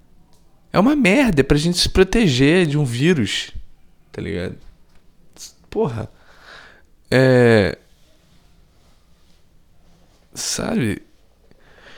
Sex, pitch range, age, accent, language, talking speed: male, 90-105 Hz, 20-39, Brazilian, Portuguese, 80 wpm